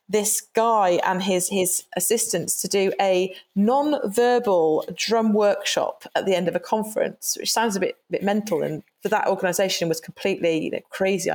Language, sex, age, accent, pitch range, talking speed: English, female, 30-49, British, 185-230 Hz, 170 wpm